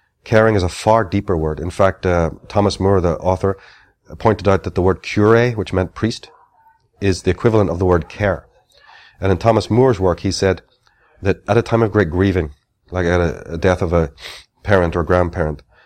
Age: 30-49